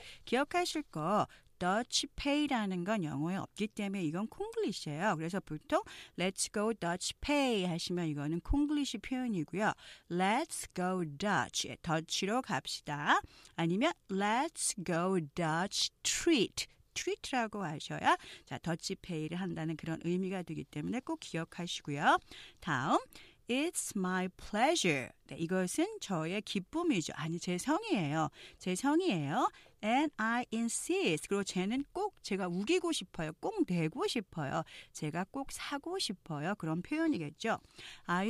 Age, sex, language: 40-59, female, Korean